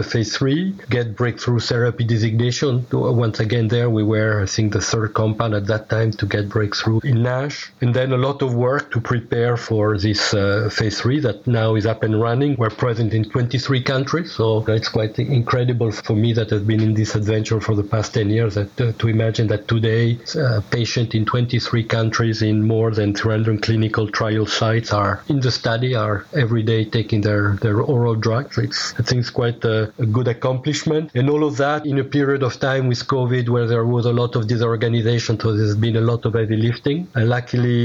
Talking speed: 210 wpm